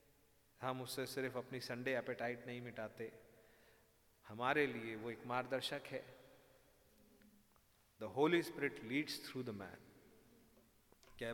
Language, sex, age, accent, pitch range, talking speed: Hindi, male, 40-59, native, 125-160 Hz, 120 wpm